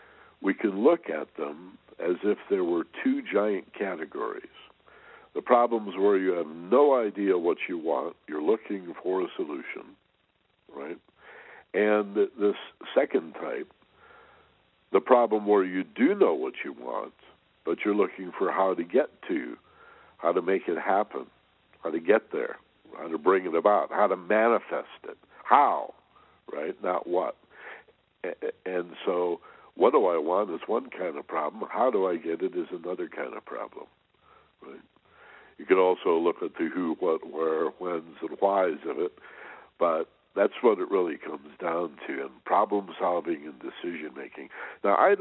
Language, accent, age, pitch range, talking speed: English, American, 60-79, 340-450 Hz, 165 wpm